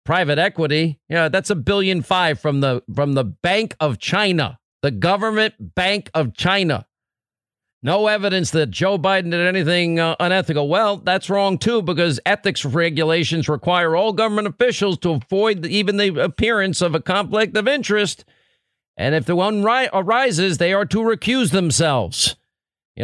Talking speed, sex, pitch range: 160 wpm, male, 150-205 Hz